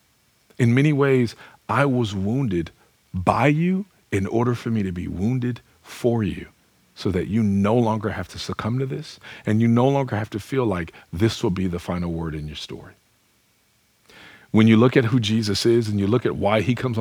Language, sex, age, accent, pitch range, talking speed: English, male, 40-59, American, 100-135 Hz, 205 wpm